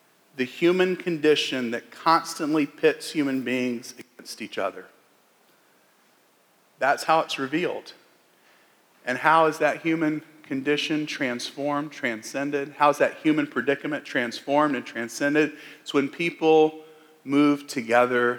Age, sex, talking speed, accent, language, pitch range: 40-59, male, 115 wpm, American, English, 125-155 Hz